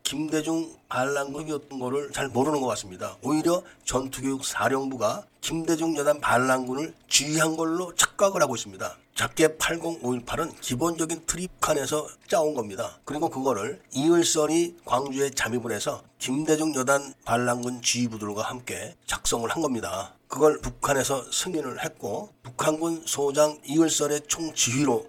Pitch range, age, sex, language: 130-165 Hz, 40-59, male, Korean